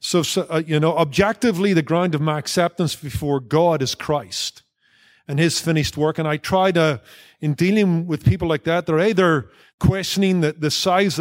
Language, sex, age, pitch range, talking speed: English, male, 50-69, 150-175 Hz, 185 wpm